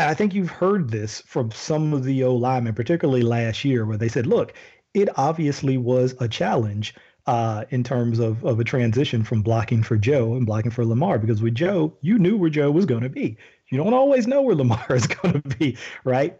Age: 40-59